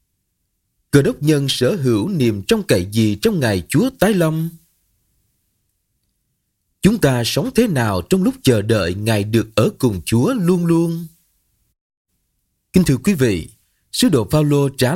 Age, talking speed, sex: 20-39, 155 wpm, male